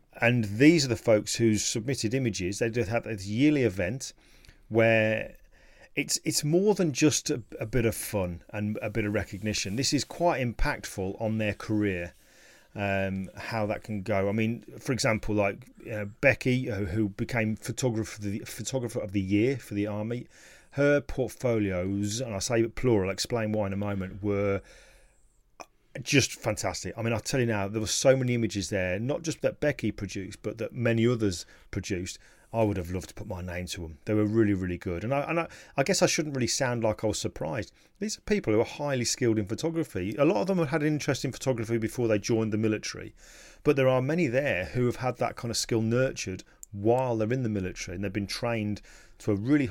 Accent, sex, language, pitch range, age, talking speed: British, male, English, 100-130 Hz, 40-59, 210 wpm